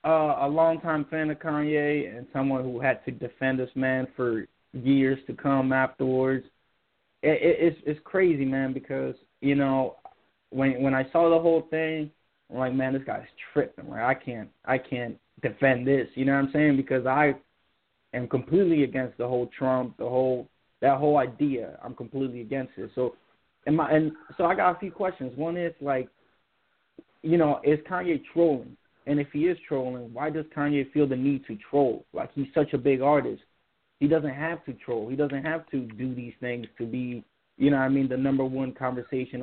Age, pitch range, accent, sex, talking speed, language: 20-39, 130-155 Hz, American, male, 200 wpm, English